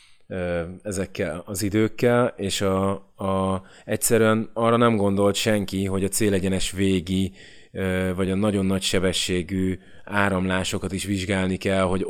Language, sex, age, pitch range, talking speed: Hungarian, male, 20-39, 95-105 Hz, 115 wpm